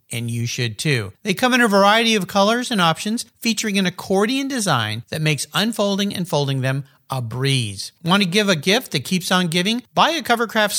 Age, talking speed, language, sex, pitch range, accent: 50-69, 205 wpm, English, male, 135-210 Hz, American